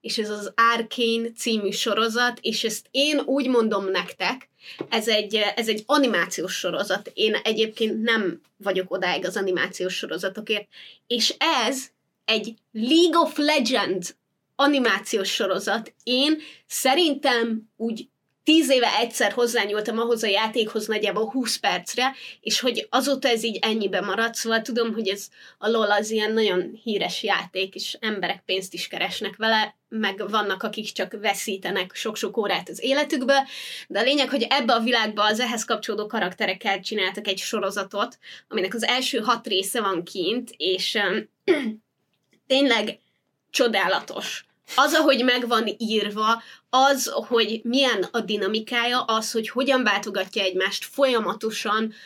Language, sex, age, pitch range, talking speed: Hungarian, female, 20-39, 205-250 Hz, 135 wpm